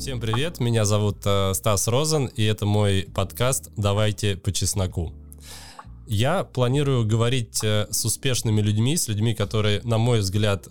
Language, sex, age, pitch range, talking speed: Russian, male, 20-39, 100-120 Hz, 150 wpm